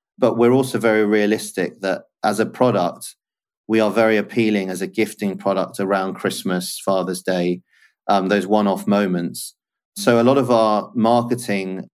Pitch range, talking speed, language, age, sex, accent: 95-115 Hz, 160 wpm, English, 40-59, male, British